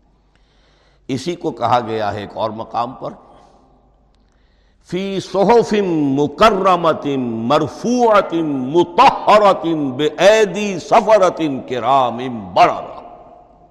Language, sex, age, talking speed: Urdu, male, 60-79, 55 wpm